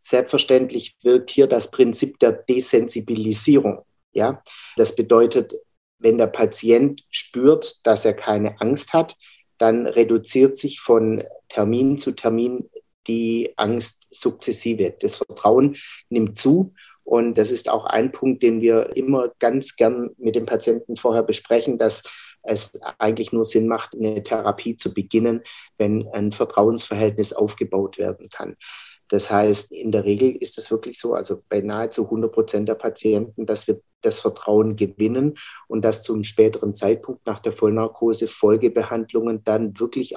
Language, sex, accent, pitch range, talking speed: German, male, German, 105-125 Hz, 145 wpm